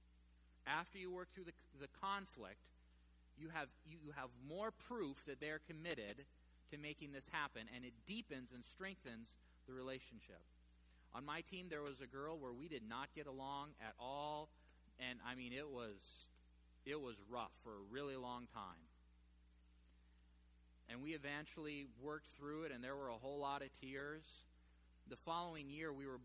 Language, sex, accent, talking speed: English, male, American, 170 wpm